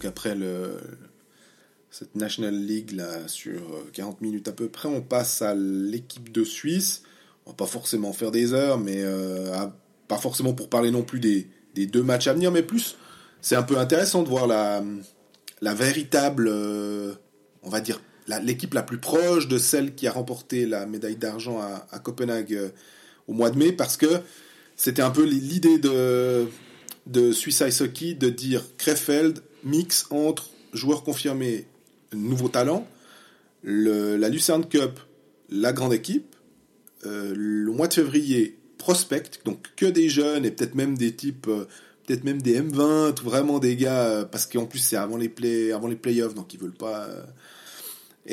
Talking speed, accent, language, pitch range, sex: 170 wpm, French, French, 110-150 Hz, male